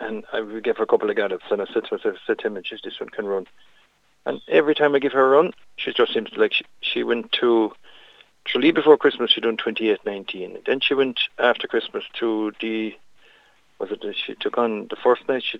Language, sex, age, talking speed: English, male, 40-59, 240 wpm